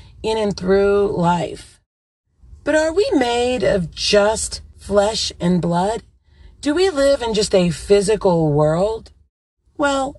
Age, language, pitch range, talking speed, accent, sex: 40-59, English, 155-235 Hz, 130 wpm, American, female